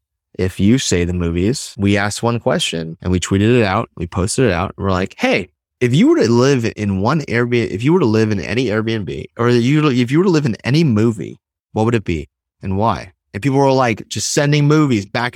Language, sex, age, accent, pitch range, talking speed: English, male, 30-49, American, 100-130 Hz, 235 wpm